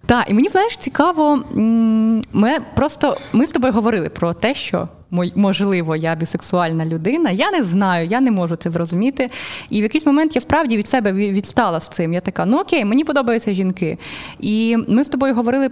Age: 20-39